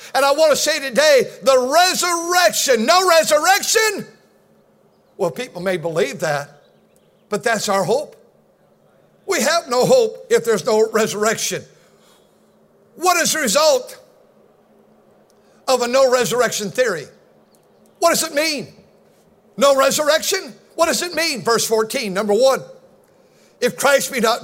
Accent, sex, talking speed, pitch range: American, male, 135 wpm, 235-295 Hz